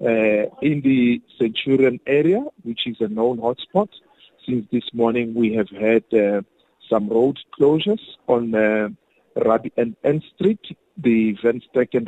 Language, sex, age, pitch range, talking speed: English, male, 50-69, 110-135 Hz, 145 wpm